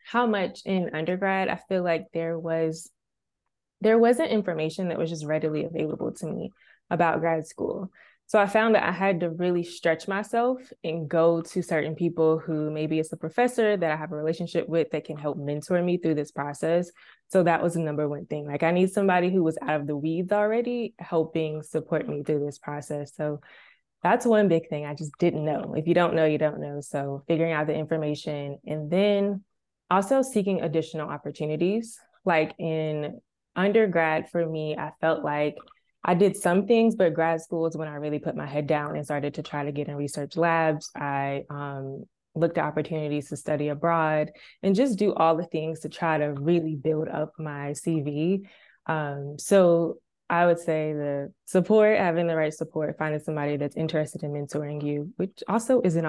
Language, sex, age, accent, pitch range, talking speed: English, female, 20-39, American, 150-180 Hz, 195 wpm